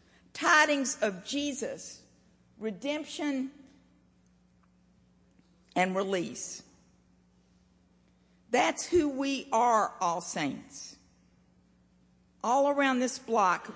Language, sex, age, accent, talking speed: English, female, 50-69, American, 70 wpm